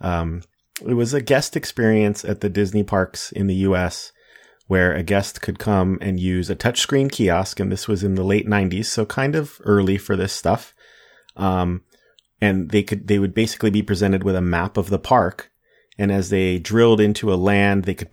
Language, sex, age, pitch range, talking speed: English, male, 30-49, 95-110 Hz, 205 wpm